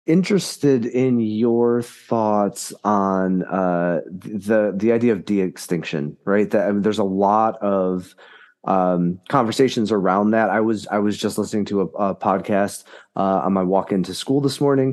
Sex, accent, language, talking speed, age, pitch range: male, American, English, 155 wpm, 30-49, 100-120 Hz